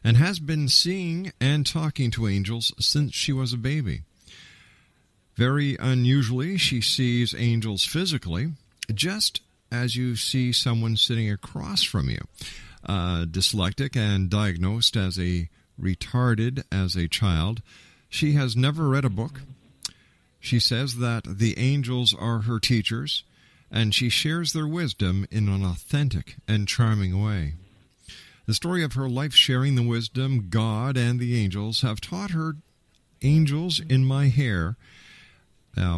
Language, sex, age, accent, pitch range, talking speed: English, male, 50-69, American, 100-130 Hz, 140 wpm